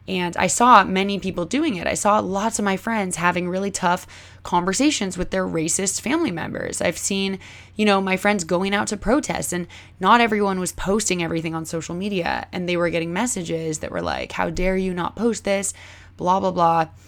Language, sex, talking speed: English, female, 205 wpm